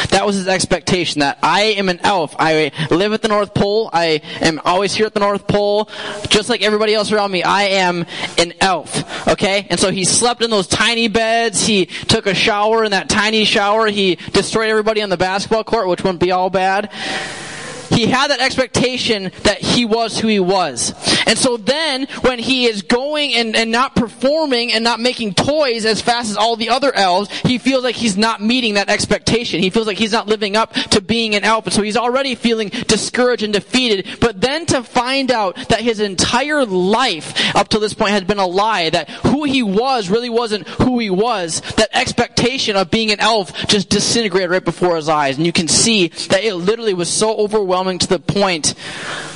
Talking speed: 210 wpm